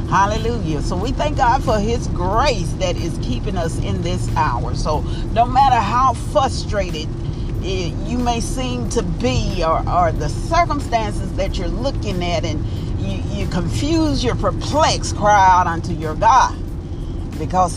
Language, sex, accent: English, female, American